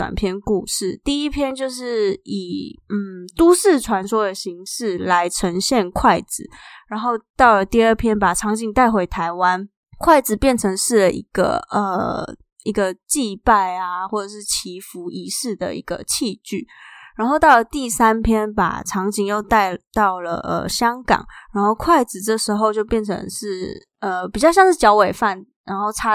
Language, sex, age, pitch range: Chinese, female, 20-39, 195-230 Hz